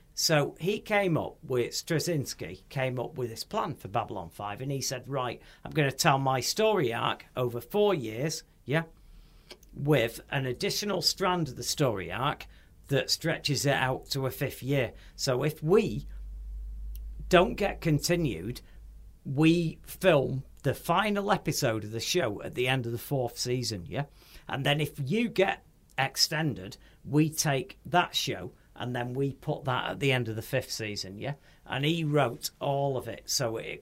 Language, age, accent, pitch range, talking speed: English, 50-69, British, 115-150 Hz, 175 wpm